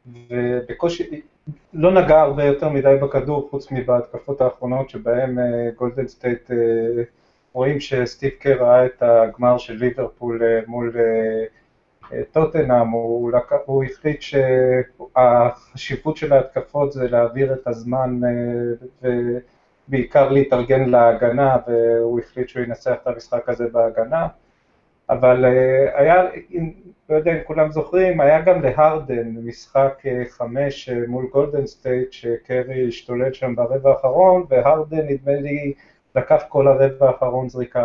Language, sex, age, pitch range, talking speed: Hebrew, male, 30-49, 120-140 Hz, 120 wpm